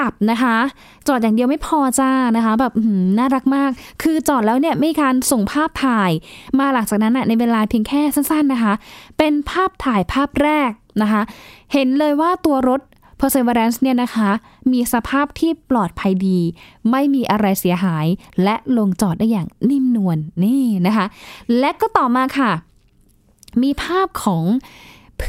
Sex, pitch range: female, 200-265 Hz